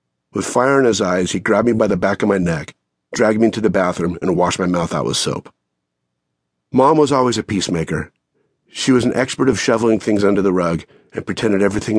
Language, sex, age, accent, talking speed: English, male, 40-59, American, 220 wpm